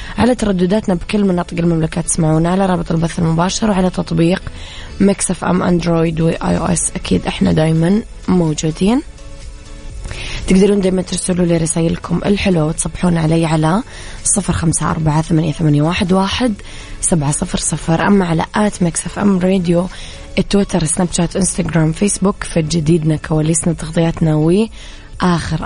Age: 20-39